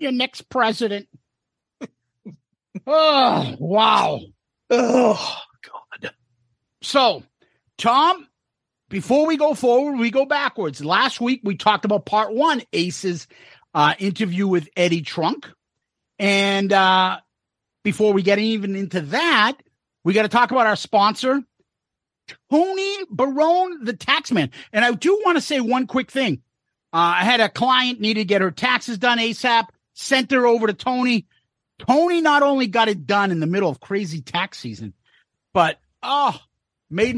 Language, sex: English, male